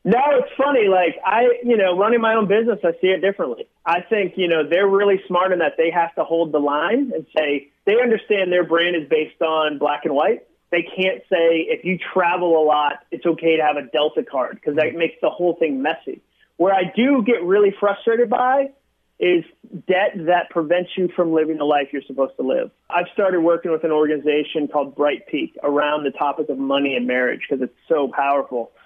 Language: English